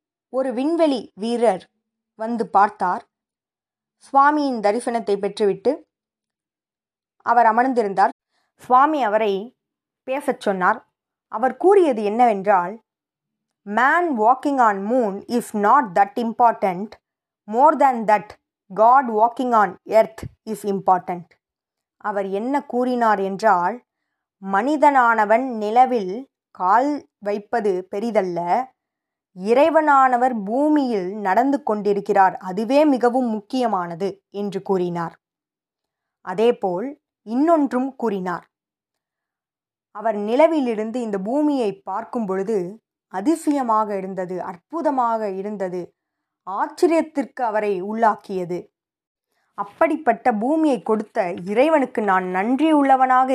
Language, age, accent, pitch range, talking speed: Tamil, 20-39, native, 200-260 Hz, 85 wpm